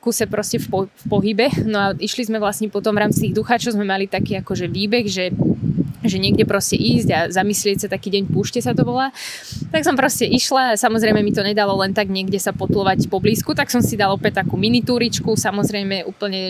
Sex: female